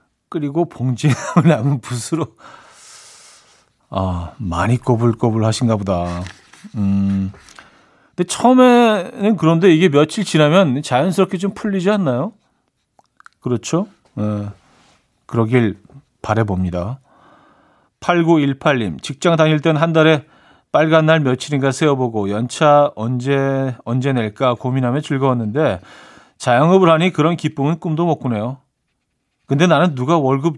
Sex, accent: male, native